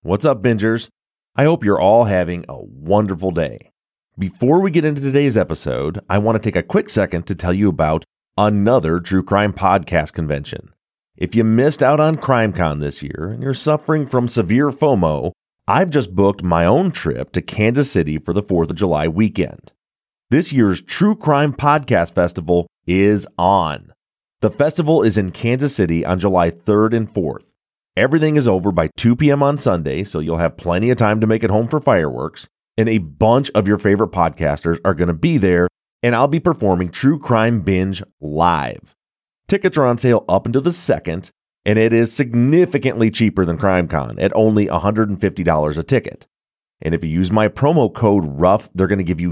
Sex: male